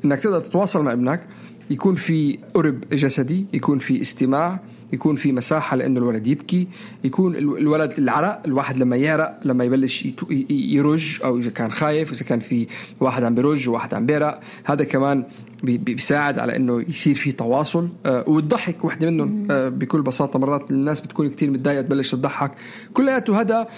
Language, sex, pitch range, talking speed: Arabic, male, 130-165 Hz, 155 wpm